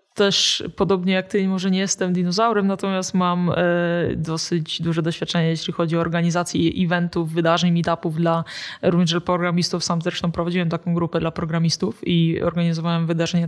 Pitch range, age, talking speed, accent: 175-195 Hz, 20-39, 145 wpm, native